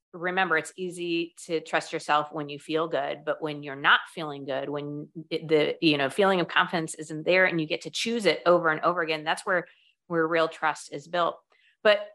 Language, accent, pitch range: English, American, 160-195 Hz